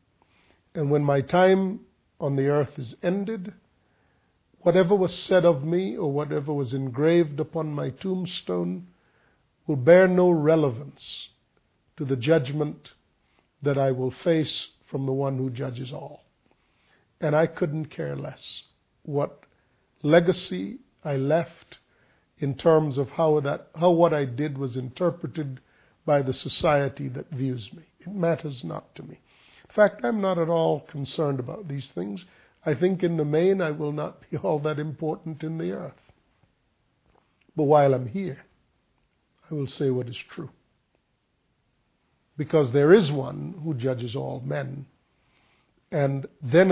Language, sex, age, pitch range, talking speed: English, male, 50-69, 135-170 Hz, 145 wpm